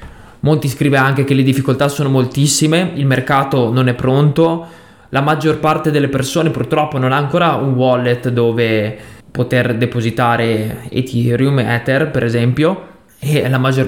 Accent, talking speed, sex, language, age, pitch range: native, 145 wpm, male, Italian, 20-39, 130-155 Hz